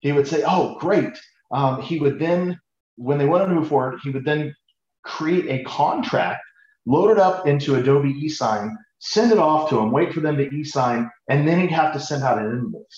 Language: English